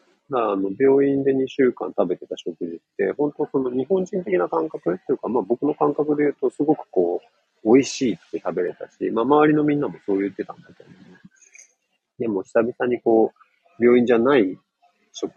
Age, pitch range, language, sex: 40-59, 110-150 Hz, Japanese, male